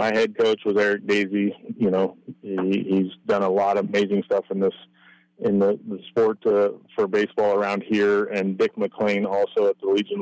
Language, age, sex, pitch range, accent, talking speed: English, 30-49, male, 100-140 Hz, American, 200 wpm